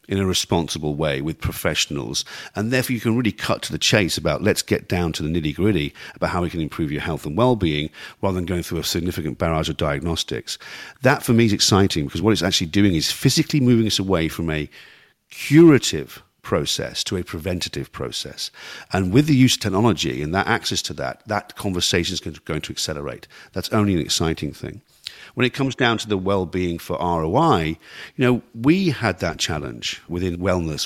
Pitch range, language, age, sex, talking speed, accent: 85-110 Hz, English, 50-69, male, 200 wpm, British